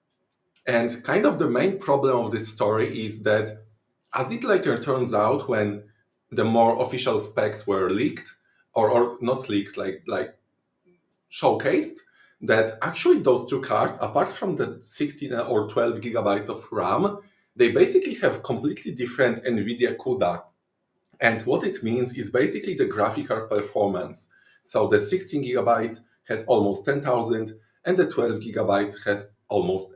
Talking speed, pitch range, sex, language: 150 wpm, 110-180 Hz, male, English